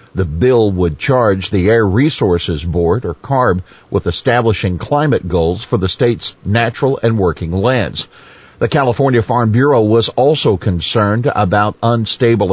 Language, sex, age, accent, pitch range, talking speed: English, male, 50-69, American, 95-125 Hz, 145 wpm